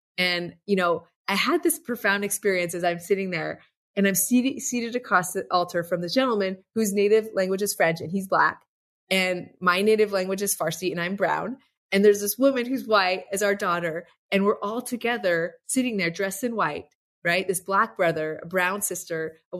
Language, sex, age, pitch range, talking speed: English, female, 30-49, 180-230 Hz, 200 wpm